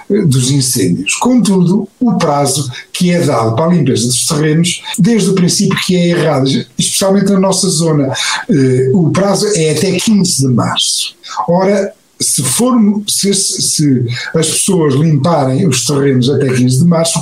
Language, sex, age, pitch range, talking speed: Portuguese, male, 50-69, 145-190 Hz, 145 wpm